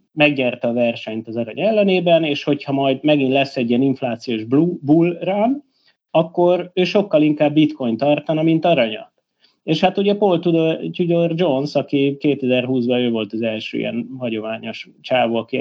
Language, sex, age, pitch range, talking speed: Hungarian, male, 30-49, 115-175 Hz, 160 wpm